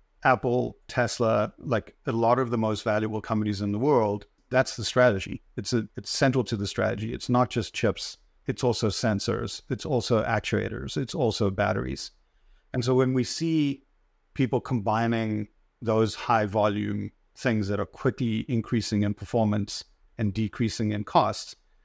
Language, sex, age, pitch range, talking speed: English, male, 50-69, 105-125 Hz, 155 wpm